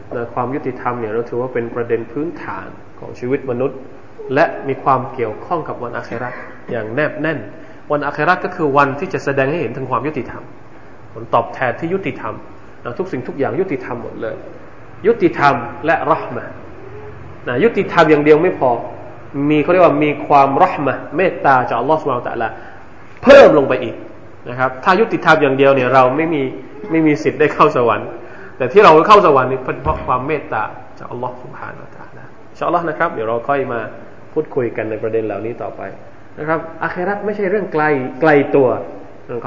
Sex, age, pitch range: male, 20-39, 130-195 Hz